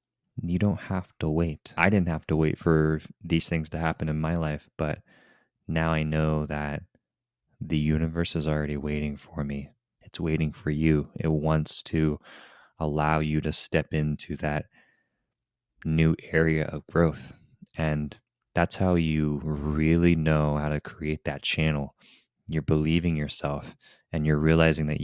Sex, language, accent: male, English, American